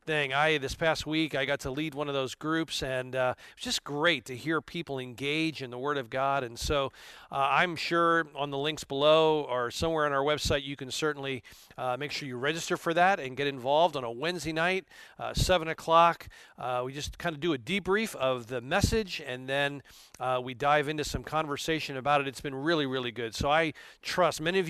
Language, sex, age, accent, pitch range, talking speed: English, male, 40-59, American, 135-165 Hz, 225 wpm